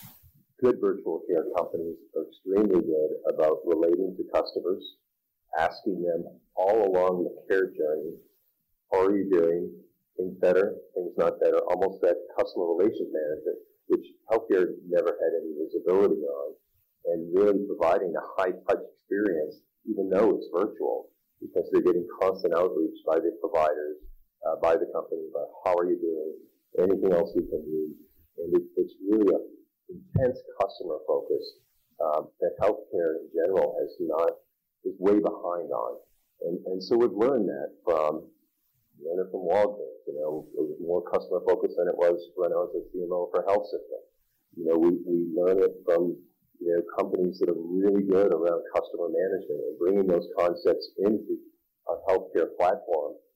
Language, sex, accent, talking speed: English, male, American, 165 wpm